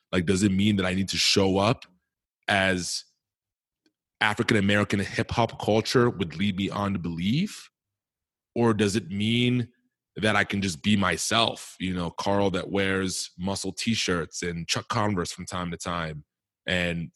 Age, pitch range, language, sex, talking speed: 20-39, 90-105 Hz, English, male, 155 wpm